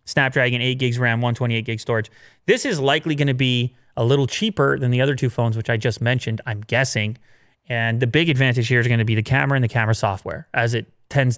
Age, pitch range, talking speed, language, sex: 30-49, 115-145 Hz, 235 wpm, English, male